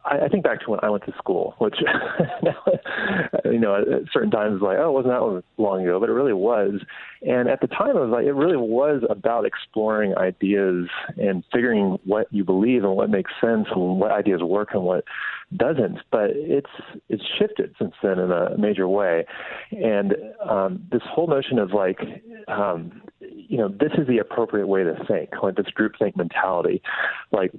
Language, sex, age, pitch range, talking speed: English, male, 30-49, 95-125 Hz, 190 wpm